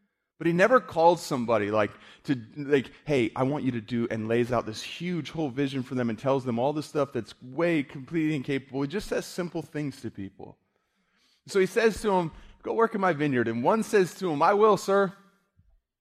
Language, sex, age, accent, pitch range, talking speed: English, male, 30-49, American, 120-180 Hz, 215 wpm